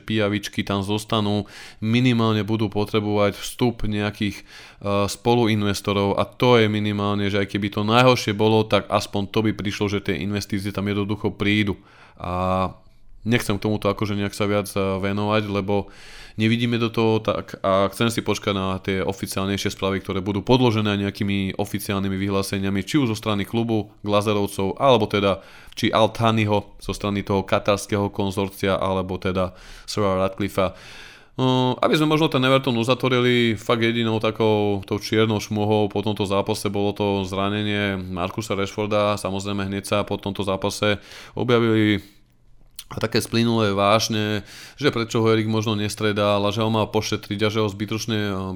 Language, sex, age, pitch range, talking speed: Slovak, male, 20-39, 100-110 Hz, 155 wpm